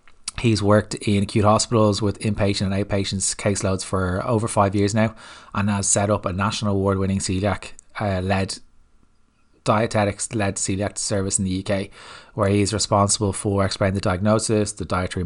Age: 20-39